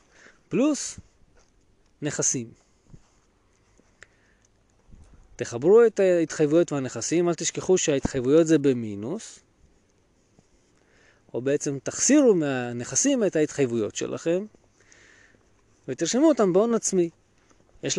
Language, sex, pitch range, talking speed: Hebrew, male, 135-205 Hz, 75 wpm